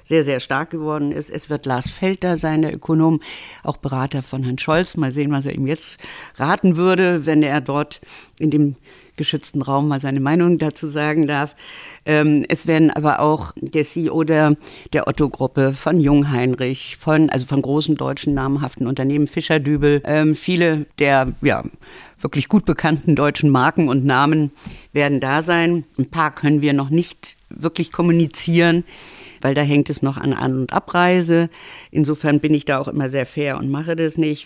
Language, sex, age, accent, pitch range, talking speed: German, female, 50-69, German, 135-160 Hz, 180 wpm